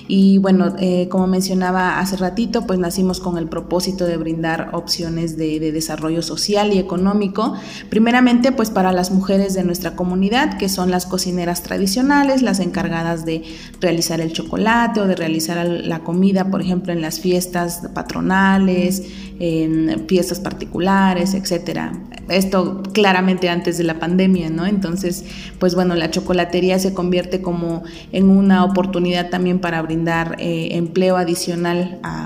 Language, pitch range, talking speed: Spanish, 175-195 Hz, 150 wpm